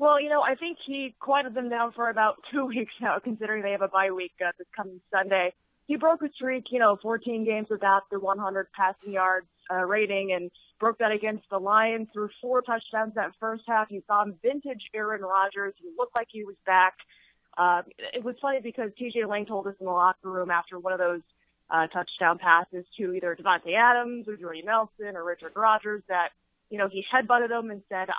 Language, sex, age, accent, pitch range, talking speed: English, female, 20-39, American, 190-225 Hz, 215 wpm